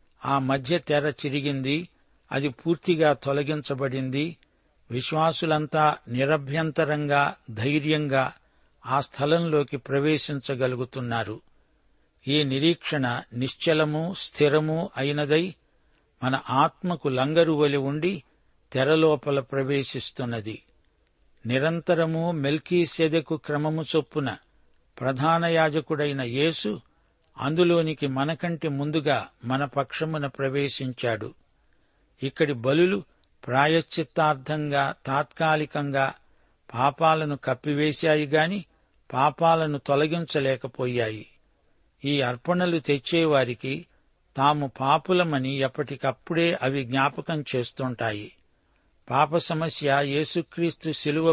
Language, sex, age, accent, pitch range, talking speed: Telugu, male, 60-79, native, 135-160 Hz, 70 wpm